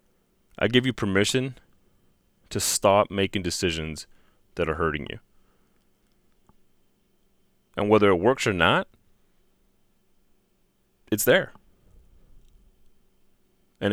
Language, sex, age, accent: English, male, 30-49, American